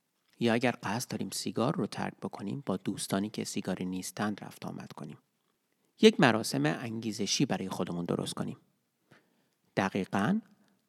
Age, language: 40-59, Persian